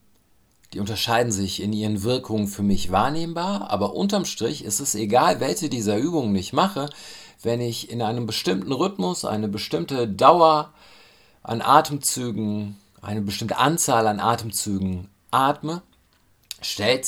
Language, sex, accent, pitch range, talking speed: German, male, German, 95-115 Hz, 130 wpm